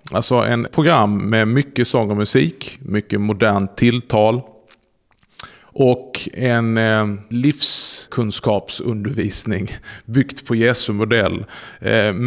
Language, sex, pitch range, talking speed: Swedish, male, 105-125 Hz, 100 wpm